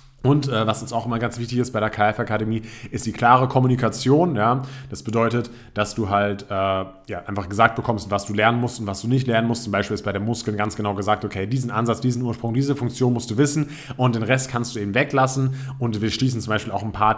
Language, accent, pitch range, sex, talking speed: German, German, 105-125 Hz, male, 250 wpm